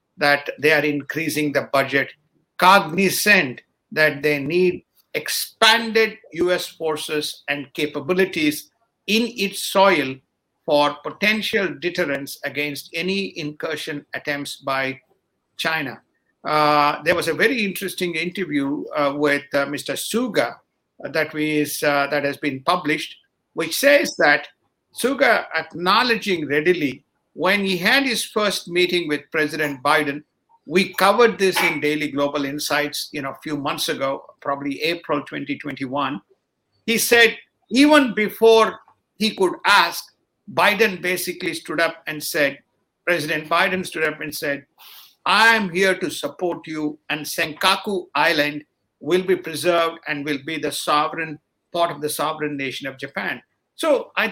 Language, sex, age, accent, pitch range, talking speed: English, male, 50-69, Indian, 145-195 Hz, 135 wpm